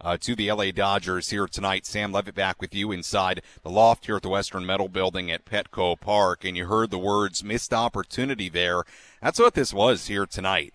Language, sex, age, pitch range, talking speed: English, male, 40-59, 100-135 Hz, 210 wpm